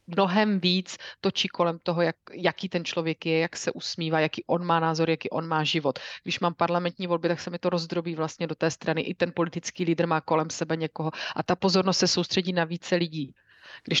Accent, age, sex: native, 30-49, female